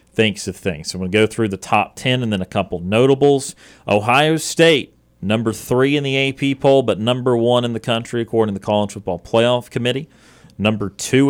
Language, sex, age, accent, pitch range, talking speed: English, male, 40-59, American, 100-130 Hz, 205 wpm